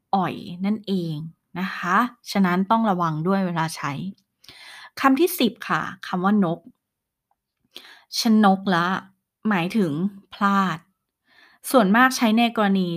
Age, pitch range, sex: 20-39, 185-235 Hz, female